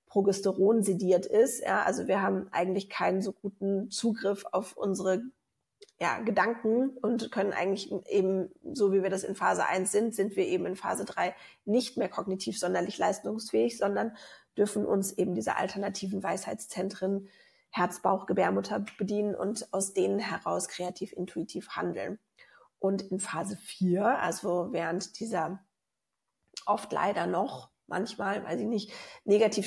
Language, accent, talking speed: German, German, 140 wpm